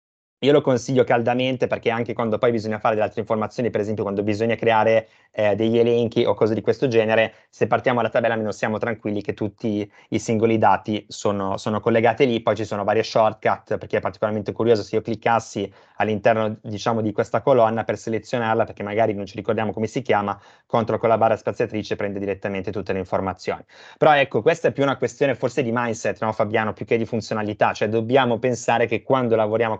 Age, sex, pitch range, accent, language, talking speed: 20-39, male, 105-120 Hz, native, Italian, 205 wpm